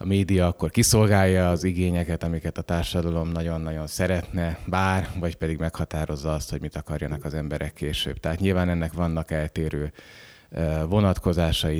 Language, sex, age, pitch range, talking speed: Hungarian, male, 30-49, 80-95 Hz, 140 wpm